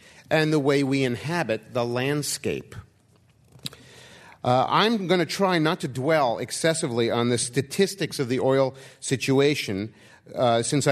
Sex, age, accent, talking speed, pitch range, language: male, 50-69, American, 135 wpm, 110-145 Hz, English